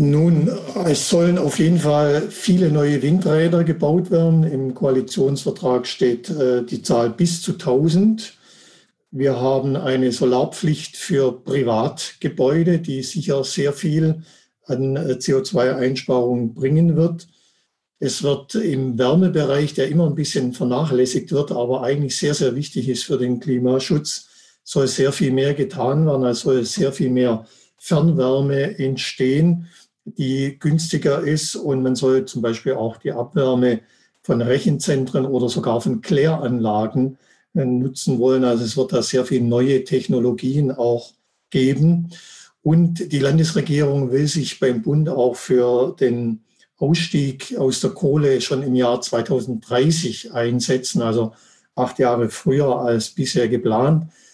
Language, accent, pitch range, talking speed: German, German, 125-160 Hz, 135 wpm